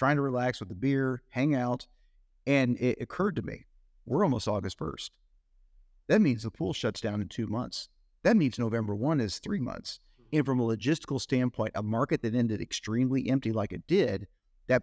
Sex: male